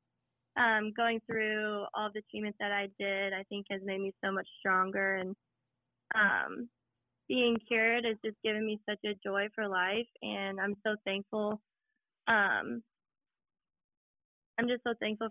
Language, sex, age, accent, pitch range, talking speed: English, female, 20-39, American, 200-225 Hz, 155 wpm